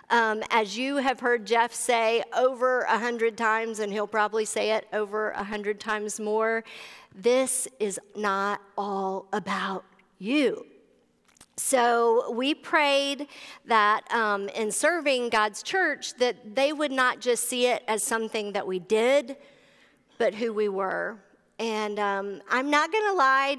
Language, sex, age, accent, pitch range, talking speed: English, female, 50-69, American, 215-255 Hz, 150 wpm